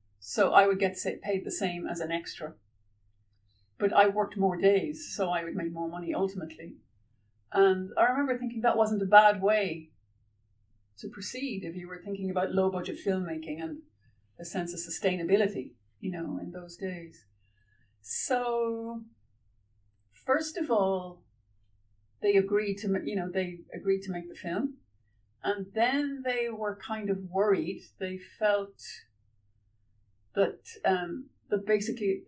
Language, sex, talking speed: English, female, 145 wpm